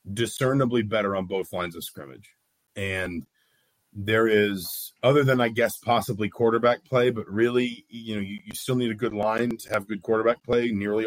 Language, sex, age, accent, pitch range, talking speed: English, male, 40-59, American, 100-115 Hz, 185 wpm